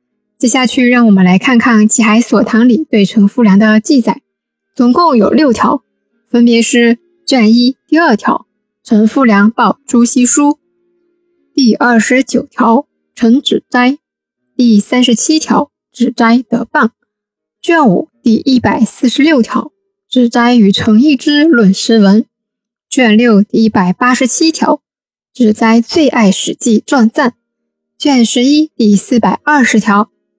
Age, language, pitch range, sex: 20-39, Chinese, 220-290 Hz, female